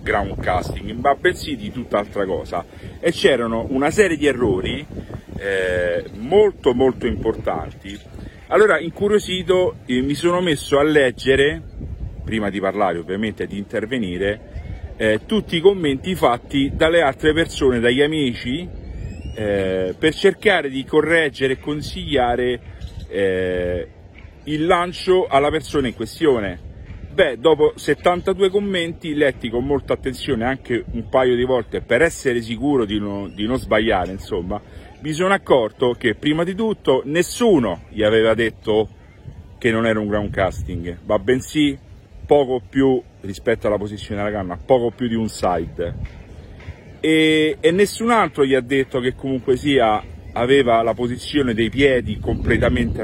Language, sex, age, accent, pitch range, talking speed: Italian, male, 40-59, native, 100-150 Hz, 140 wpm